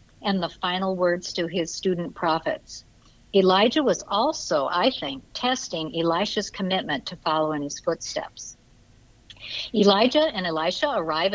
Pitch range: 160-215 Hz